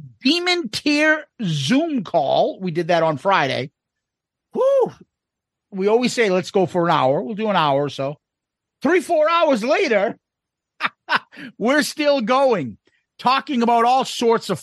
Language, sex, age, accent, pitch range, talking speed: English, male, 50-69, American, 180-245 Hz, 150 wpm